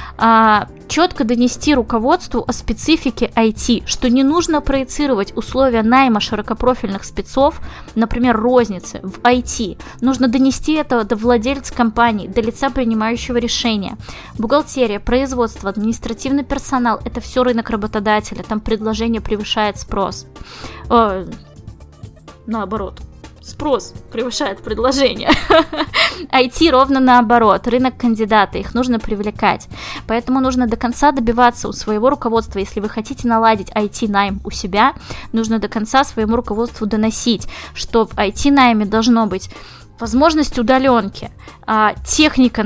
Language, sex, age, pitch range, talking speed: Russian, female, 20-39, 215-255 Hz, 115 wpm